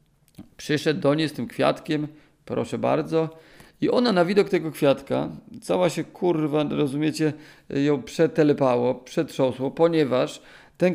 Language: Polish